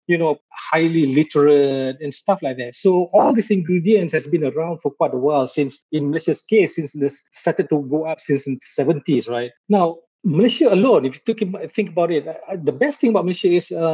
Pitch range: 140-180 Hz